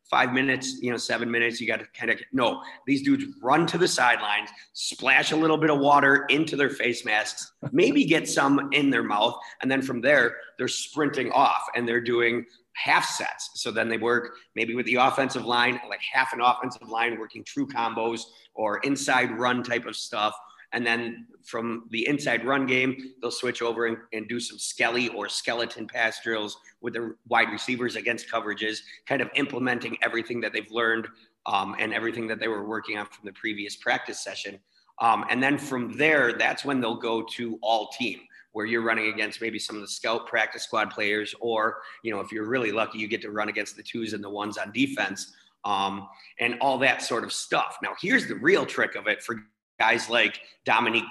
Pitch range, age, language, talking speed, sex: 110-130 Hz, 30-49, English, 205 wpm, male